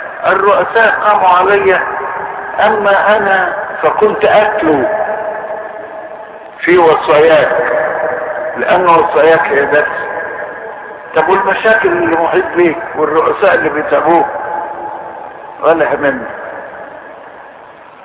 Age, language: 60-79, Arabic